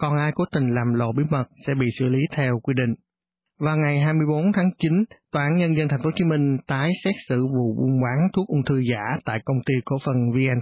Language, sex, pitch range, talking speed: English, male, 130-160 Hz, 250 wpm